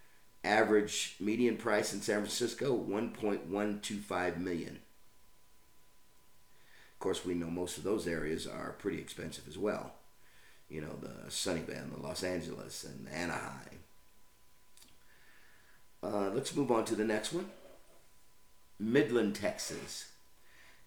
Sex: male